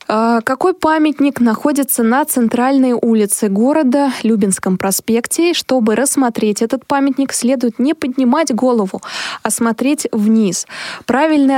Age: 20-39